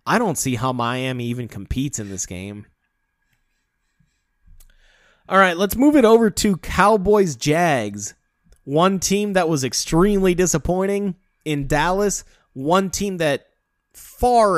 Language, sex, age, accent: English, male, 30-49, American